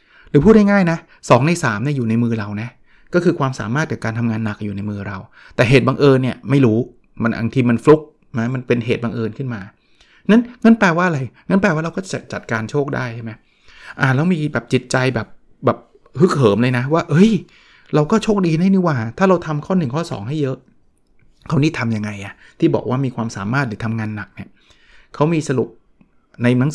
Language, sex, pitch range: Thai, male, 115-160 Hz